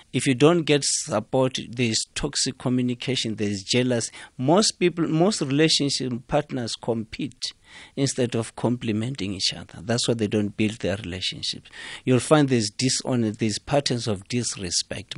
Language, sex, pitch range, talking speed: English, male, 110-135 Hz, 140 wpm